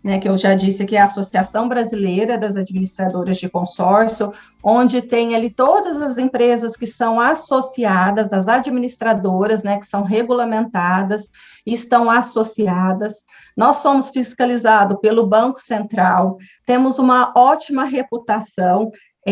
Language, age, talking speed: Portuguese, 40-59, 125 wpm